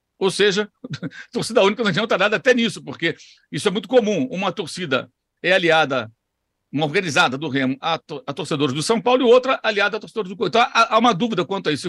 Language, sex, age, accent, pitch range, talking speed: Portuguese, male, 60-79, Brazilian, 165-235 Hz, 220 wpm